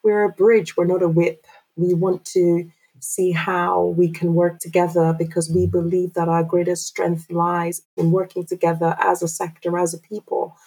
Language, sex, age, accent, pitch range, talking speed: English, female, 30-49, British, 160-175 Hz, 185 wpm